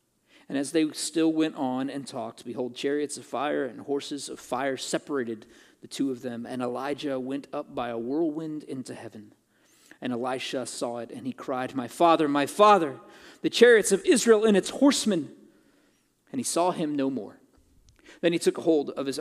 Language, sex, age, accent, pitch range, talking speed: English, male, 40-59, American, 130-180 Hz, 185 wpm